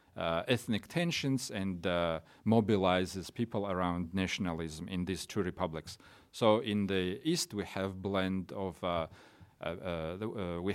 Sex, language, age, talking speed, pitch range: male, English, 40-59, 145 wpm, 90-120 Hz